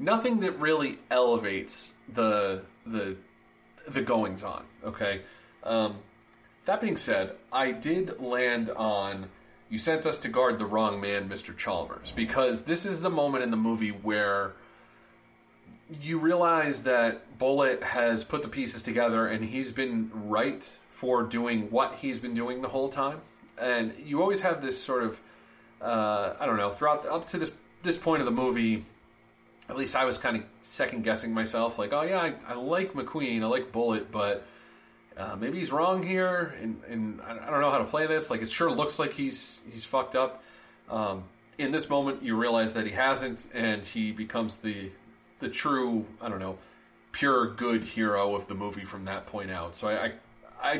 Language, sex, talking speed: English, male, 185 wpm